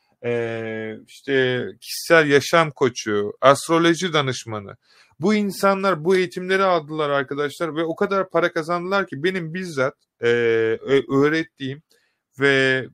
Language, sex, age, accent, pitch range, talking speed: Turkish, male, 30-49, native, 135-170 Hz, 110 wpm